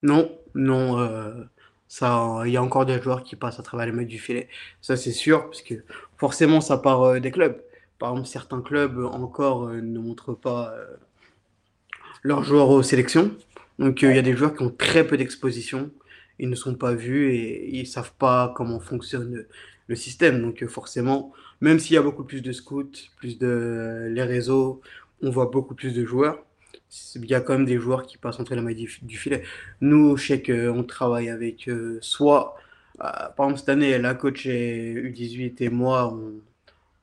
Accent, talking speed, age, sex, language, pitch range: French, 200 wpm, 20-39, male, French, 120-135 Hz